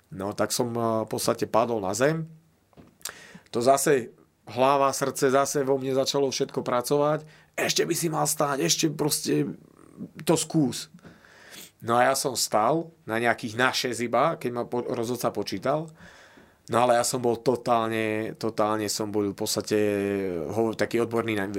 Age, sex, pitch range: 30-49, male, 110-135 Hz